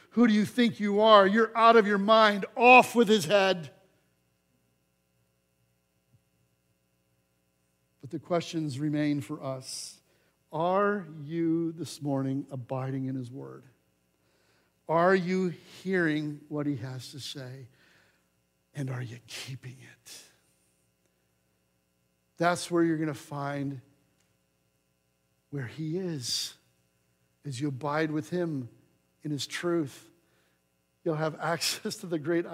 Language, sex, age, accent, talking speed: English, male, 60-79, American, 120 wpm